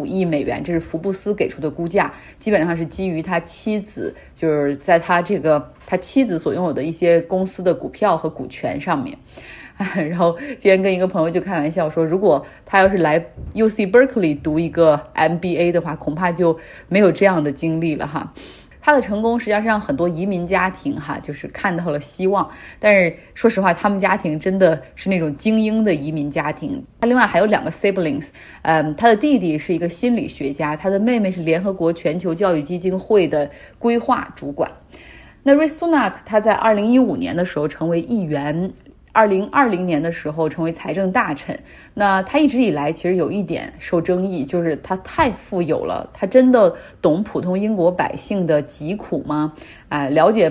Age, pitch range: 30-49, 160-200 Hz